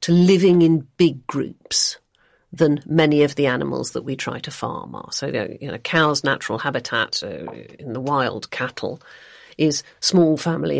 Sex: female